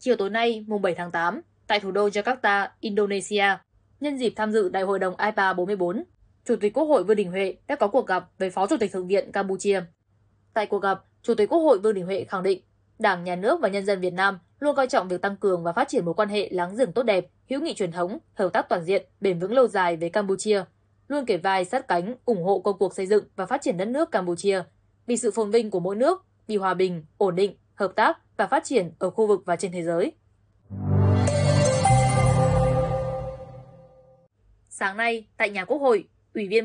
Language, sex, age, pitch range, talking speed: Vietnamese, female, 10-29, 185-225 Hz, 225 wpm